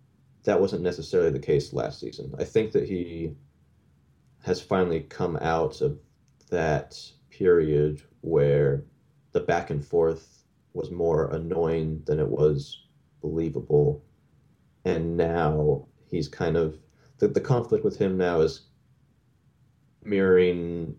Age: 30-49